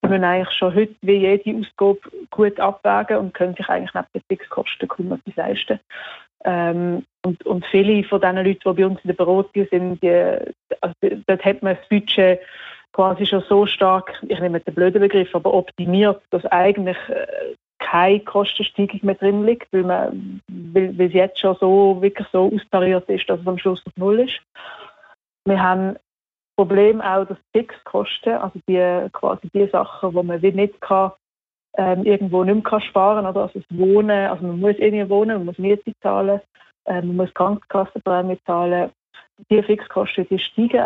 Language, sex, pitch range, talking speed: German, female, 185-205 Hz, 170 wpm